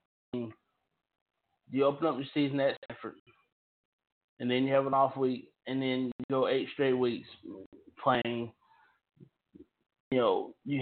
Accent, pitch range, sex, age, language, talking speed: American, 125-155 Hz, male, 20-39, English, 140 wpm